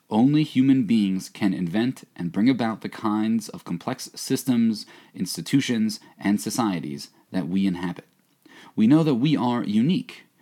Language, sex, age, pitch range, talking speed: English, male, 30-49, 100-145 Hz, 145 wpm